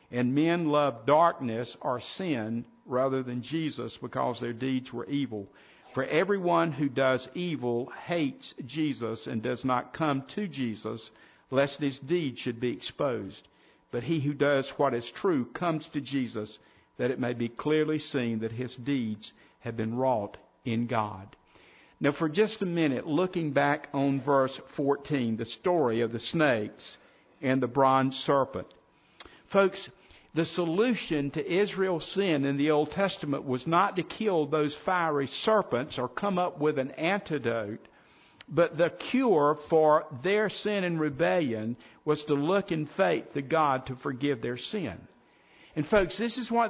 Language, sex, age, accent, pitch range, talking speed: English, male, 50-69, American, 125-170 Hz, 160 wpm